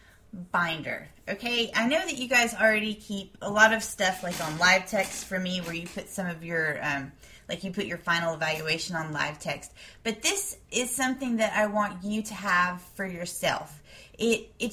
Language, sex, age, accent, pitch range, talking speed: English, female, 20-39, American, 180-220 Hz, 195 wpm